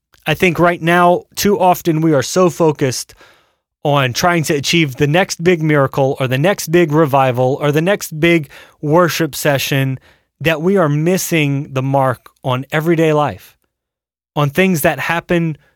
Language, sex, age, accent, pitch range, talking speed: English, male, 30-49, American, 130-175 Hz, 160 wpm